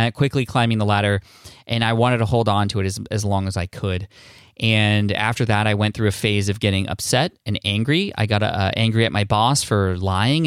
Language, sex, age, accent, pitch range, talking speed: English, male, 20-39, American, 100-120 Hz, 230 wpm